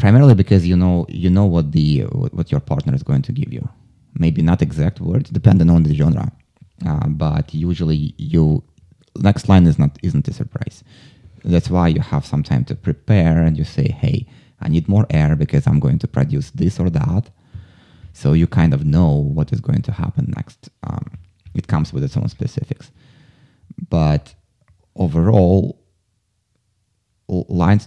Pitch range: 80-135 Hz